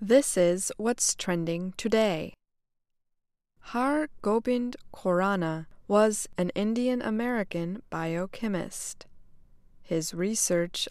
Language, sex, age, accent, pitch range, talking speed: English, female, 20-39, American, 175-230 Hz, 85 wpm